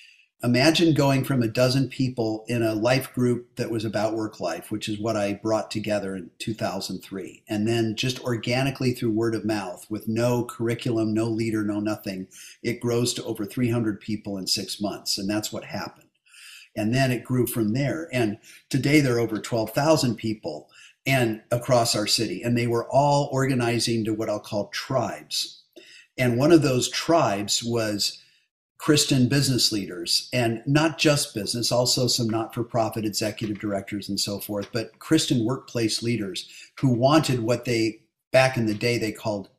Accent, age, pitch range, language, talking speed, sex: American, 50-69, 110-135 Hz, English, 175 wpm, male